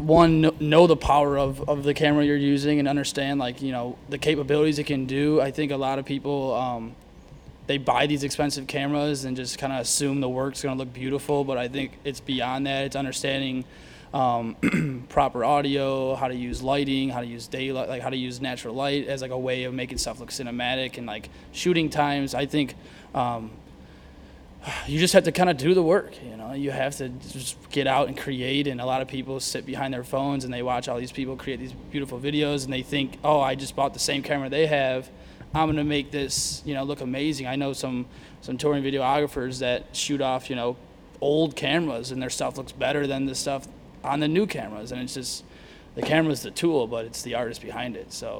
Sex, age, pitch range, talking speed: male, 20-39, 130-145 Hz, 225 wpm